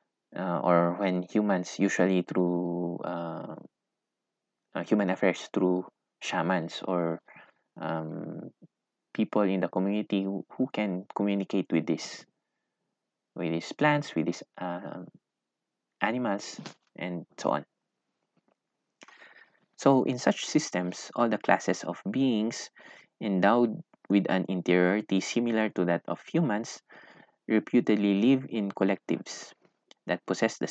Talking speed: 115 wpm